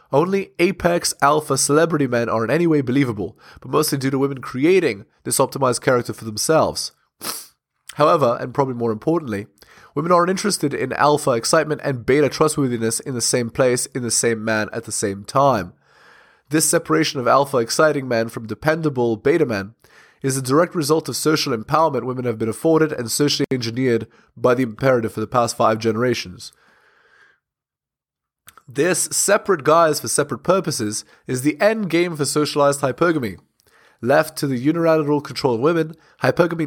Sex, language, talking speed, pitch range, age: male, English, 155 wpm, 115-155 Hz, 20-39